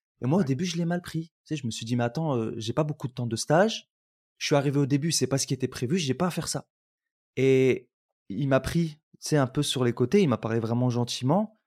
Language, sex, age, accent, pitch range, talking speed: French, male, 20-39, French, 130-165 Hz, 295 wpm